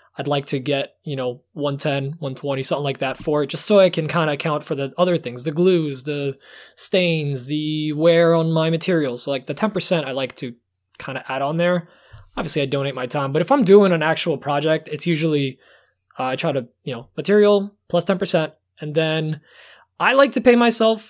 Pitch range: 140-170 Hz